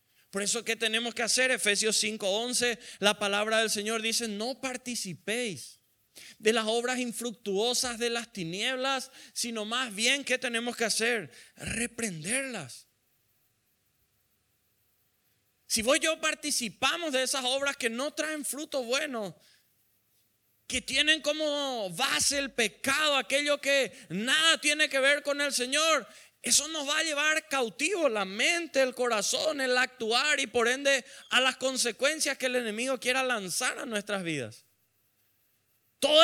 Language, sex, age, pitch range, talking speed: Spanish, male, 30-49, 220-280 Hz, 140 wpm